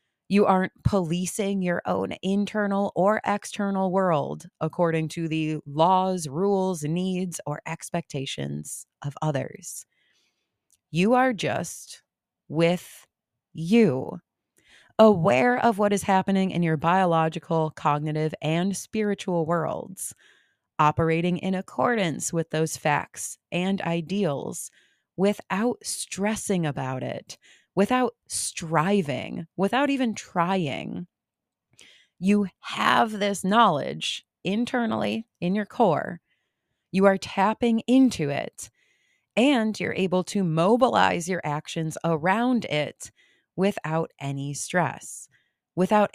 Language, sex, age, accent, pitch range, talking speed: English, female, 30-49, American, 165-210 Hz, 105 wpm